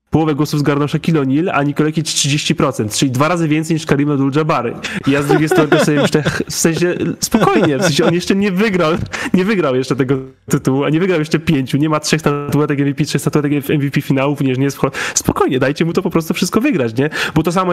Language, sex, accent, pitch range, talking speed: Polish, male, native, 150-195 Hz, 220 wpm